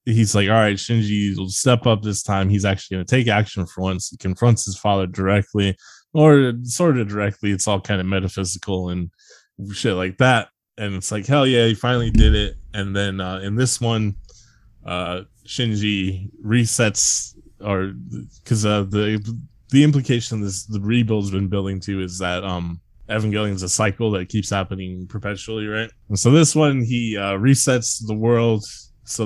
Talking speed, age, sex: 175 wpm, 20-39, male